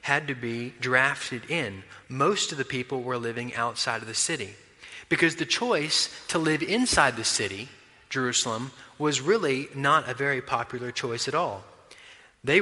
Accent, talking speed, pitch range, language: American, 160 wpm, 125-155 Hz, English